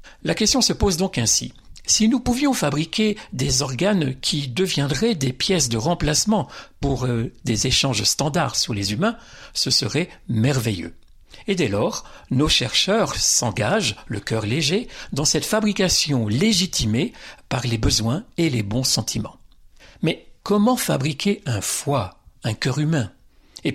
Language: French